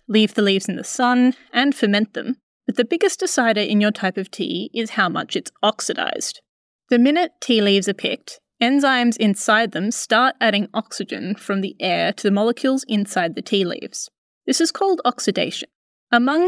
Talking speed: 180 wpm